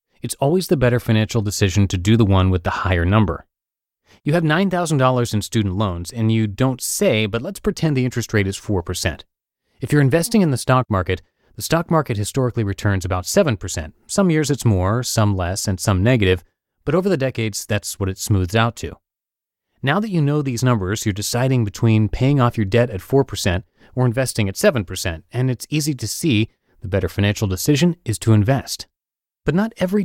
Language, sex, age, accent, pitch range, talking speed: English, male, 30-49, American, 100-145 Hz, 200 wpm